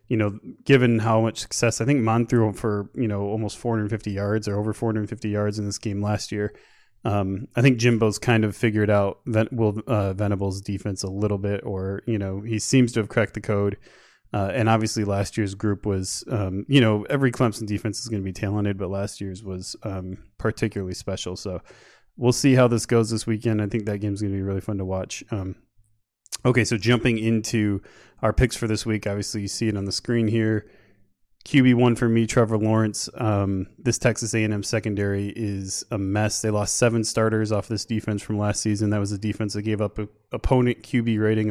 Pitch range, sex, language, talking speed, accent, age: 100-115 Hz, male, English, 215 wpm, American, 20-39